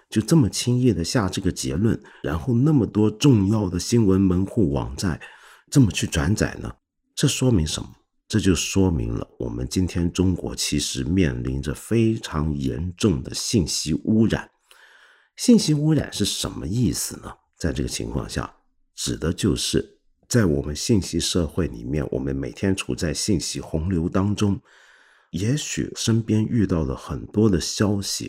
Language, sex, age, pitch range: Chinese, male, 50-69, 75-115 Hz